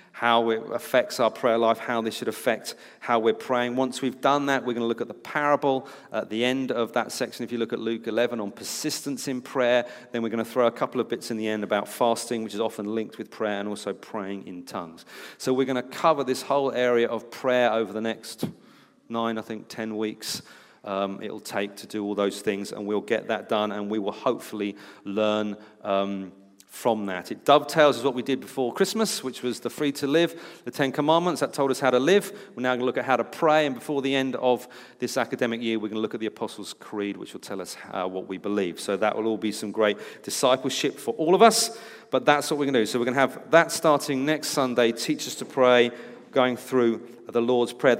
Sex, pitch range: male, 110-140 Hz